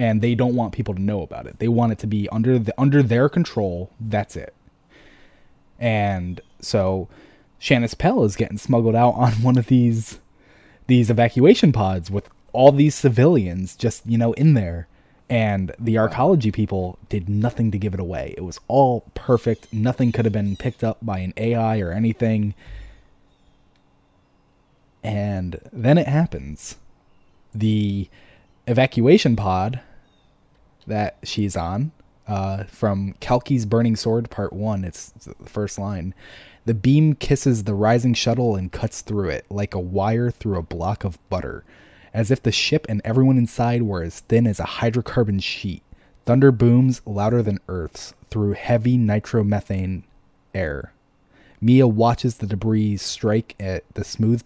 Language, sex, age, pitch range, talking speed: English, male, 20-39, 100-120 Hz, 155 wpm